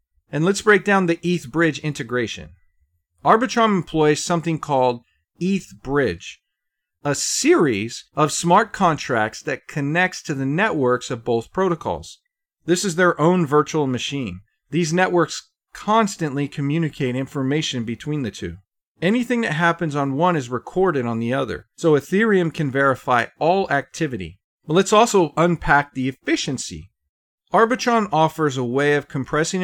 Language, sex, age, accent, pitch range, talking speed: English, male, 40-59, American, 130-175 Hz, 140 wpm